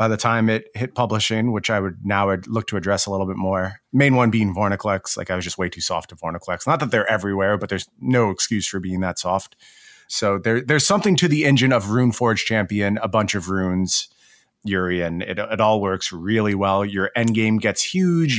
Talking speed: 215 wpm